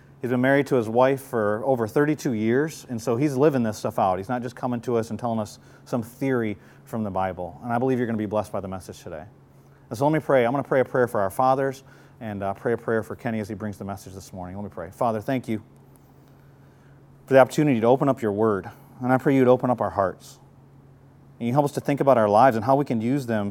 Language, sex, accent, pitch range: English, male, American, 110-135 Hz